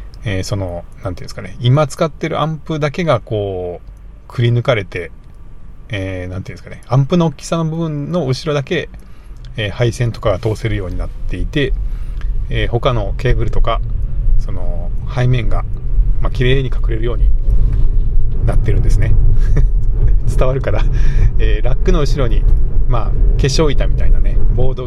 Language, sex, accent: Japanese, male, native